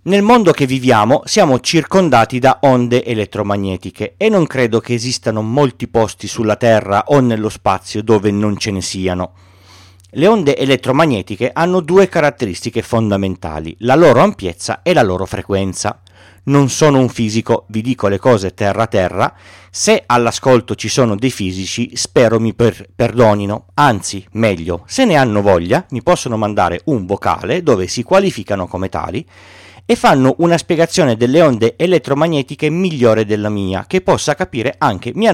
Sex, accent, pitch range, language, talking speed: male, native, 95-140 Hz, Italian, 155 wpm